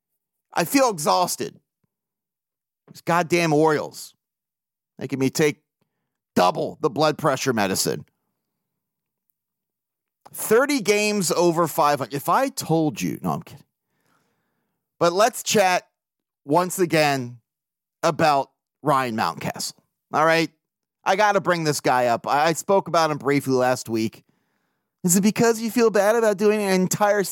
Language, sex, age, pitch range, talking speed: English, male, 40-59, 155-215 Hz, 130 wpm